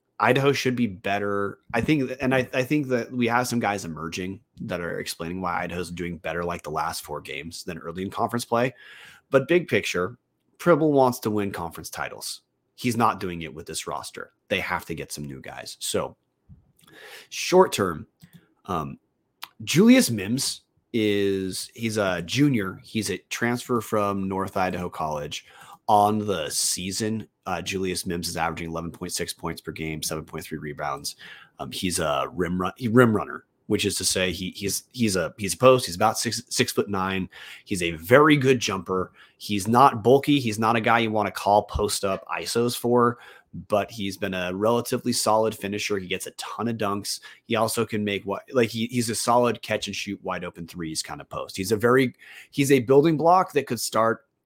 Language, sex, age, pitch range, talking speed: English, male, 30-49, 90-120 Hz, 190 wpm